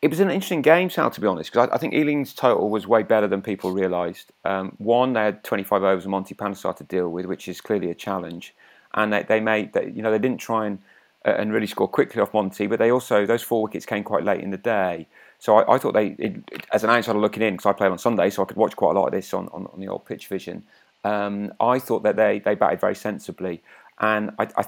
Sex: male